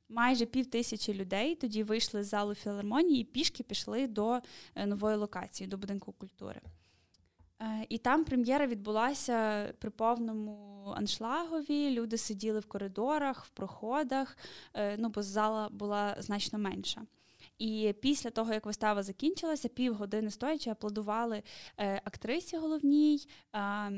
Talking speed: 120 wpm